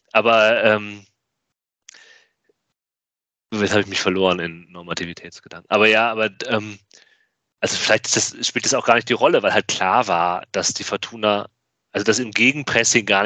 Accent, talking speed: German, 150 wpm